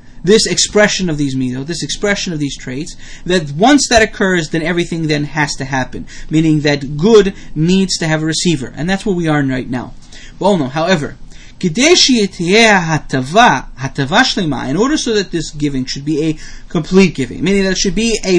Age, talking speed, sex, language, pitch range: 30-49, 185 wpm, male, English, 155-210 Hz